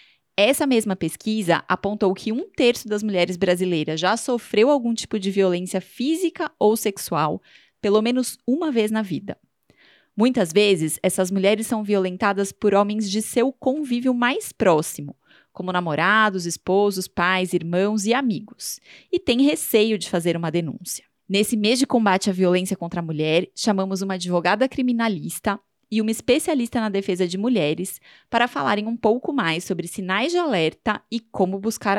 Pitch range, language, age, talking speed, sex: 180-230 Hz, Portuguese, 20-39, 160 wpm, female